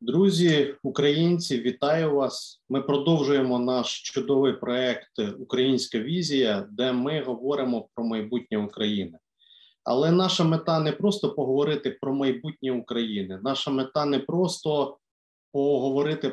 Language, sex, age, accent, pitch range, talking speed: Ukrainian, male, 30-49, native, 125-155 Hz, 115 wpm